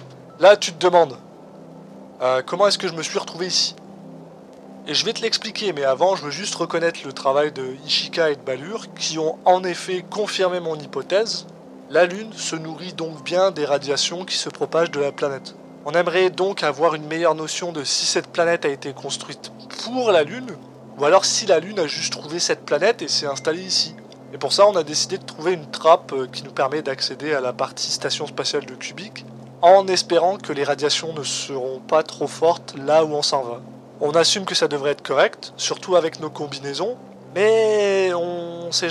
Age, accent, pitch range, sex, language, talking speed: 20-39, French, 140-180 Hz, male, French, 205 wpm